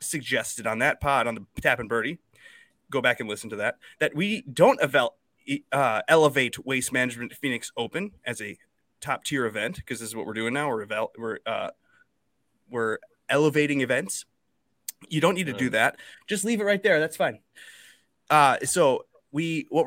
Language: English